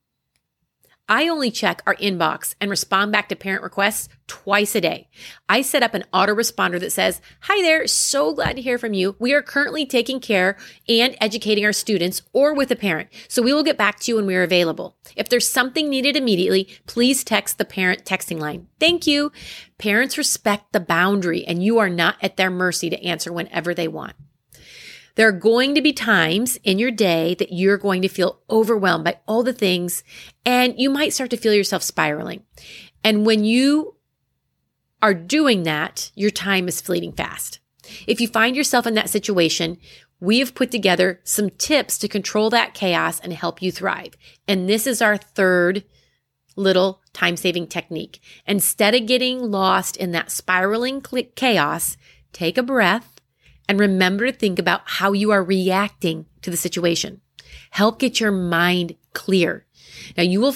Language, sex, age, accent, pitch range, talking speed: English, female, 30-49, American, 180-235 Hz, 180 wpm